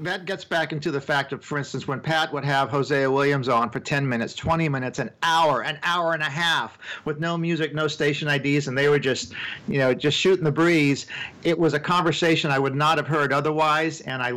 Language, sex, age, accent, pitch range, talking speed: English, male, 50-69, American, 135-160 Hz, 235 wpm